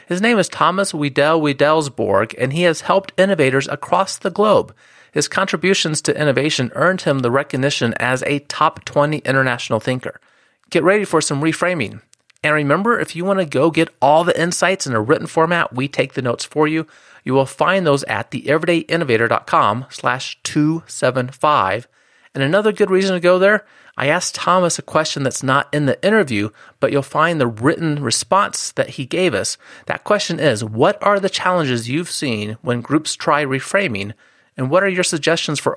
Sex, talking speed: male, 180 wpm